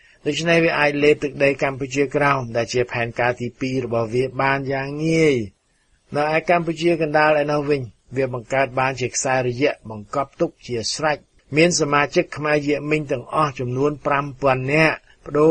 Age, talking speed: 60-79, 45 wpm